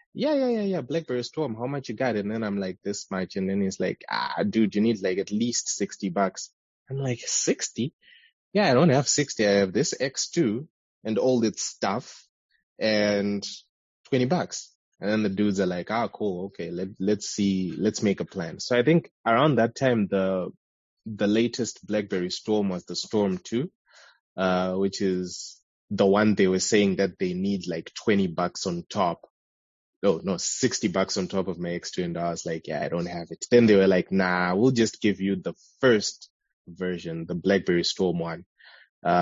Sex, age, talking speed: male, 20-39, 200 wpm